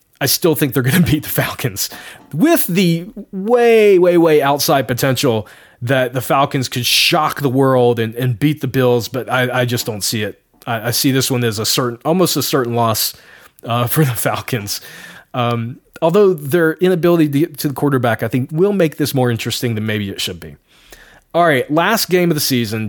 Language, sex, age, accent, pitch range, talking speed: English, male, 20-39, American, 120-155 Hz, 205 wpm